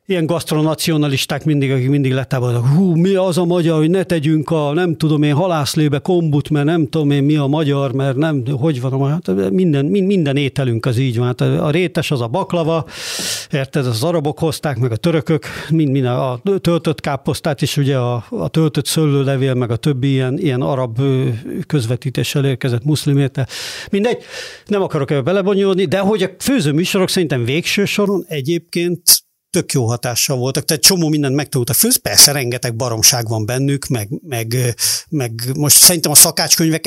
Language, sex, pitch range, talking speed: Hungarian, male, 130-165 Hz, 175 wpm